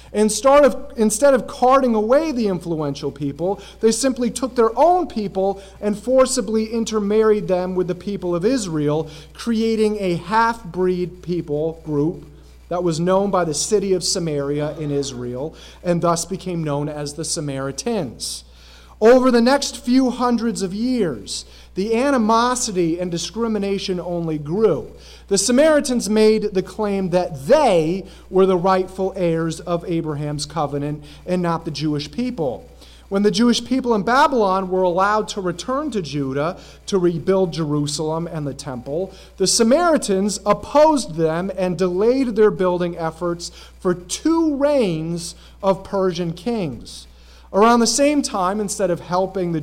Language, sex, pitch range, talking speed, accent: English, male, 165-230 Hz, 145 wpm, American